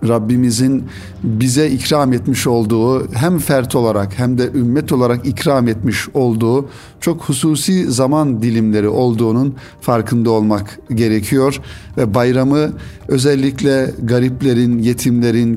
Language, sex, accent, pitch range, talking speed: Turkish, male, native, 115-135 Hz, 110 wpm